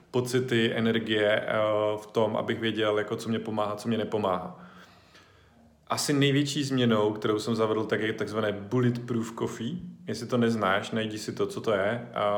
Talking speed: 170 wpm